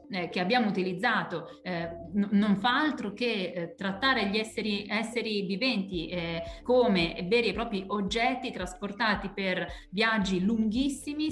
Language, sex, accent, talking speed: Italian, female, native, 140 wpm